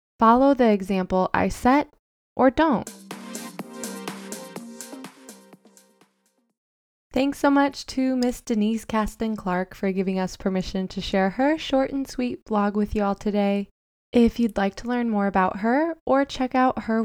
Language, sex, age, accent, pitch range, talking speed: English, female, 20-39, American, 190-240 Hz, 150 wpm